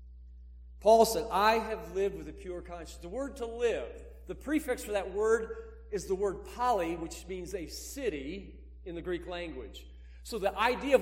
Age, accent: 50-69, American